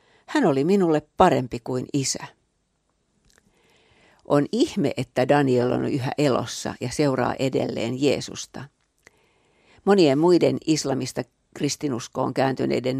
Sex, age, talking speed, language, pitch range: female, 50-69, 100 wpm, Finnish, 125-150 Hz